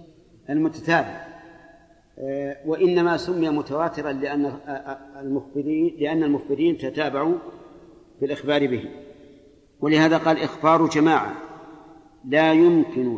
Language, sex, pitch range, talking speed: Arabic, male, 140-175 Hz, 80 wpm